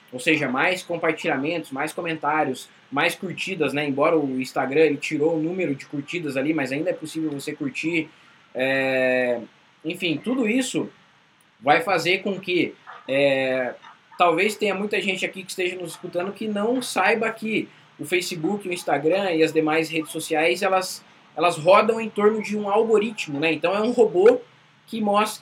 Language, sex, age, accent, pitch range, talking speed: Portuguese, male, 20-39, Brazilian, 160-205 Hz, 170 wpm